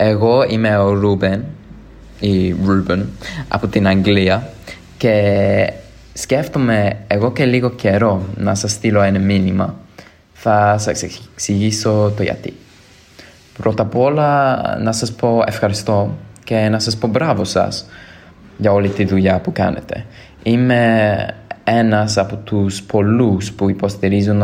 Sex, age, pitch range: male, 20-39, 95-110 Hz